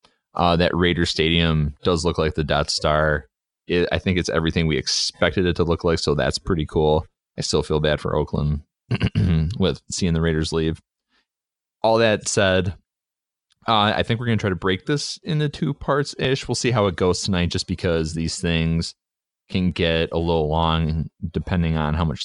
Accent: American